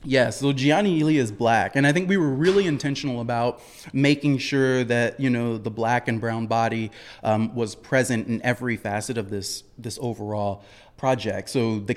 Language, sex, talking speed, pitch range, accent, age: English, male, 190 wpm, 115-145 Hz, American, 30-49